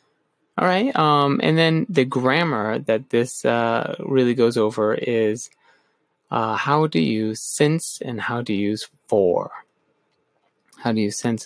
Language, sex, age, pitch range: Japanese, male, 20-39, 115-150 Hz